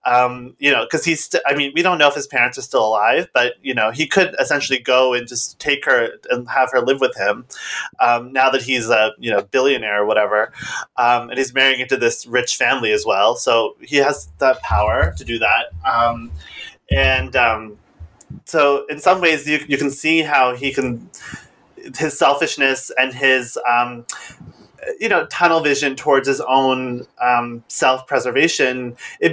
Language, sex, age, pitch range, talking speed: English, male, 20-39, 120-140 Hz, 185 wpm